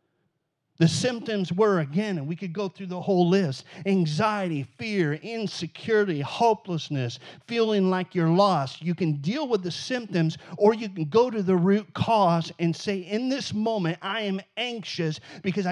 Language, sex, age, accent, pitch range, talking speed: English, male, 50-69, American, 145-185 Hz, 165 wpm